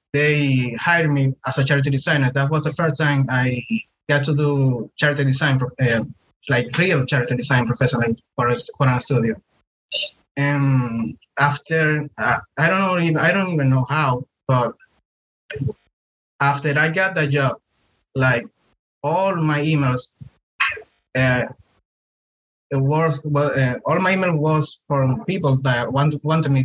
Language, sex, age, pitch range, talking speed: English, male, 20-39, 125-155 Hz, 140 wpm